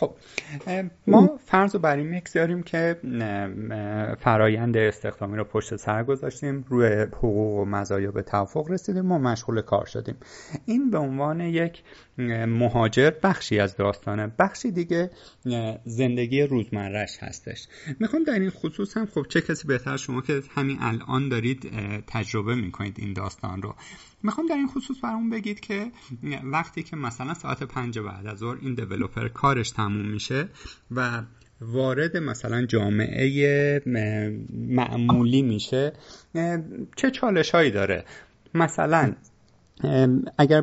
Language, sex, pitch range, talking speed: Persian, male, 115-160 Hz, 130 wpm